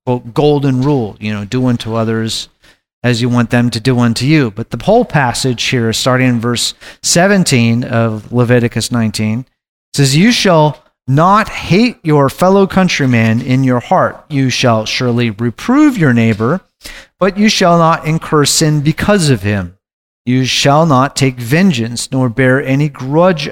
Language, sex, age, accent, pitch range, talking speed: English, male, 40-59, American, 120-160 Hz, 160 wpm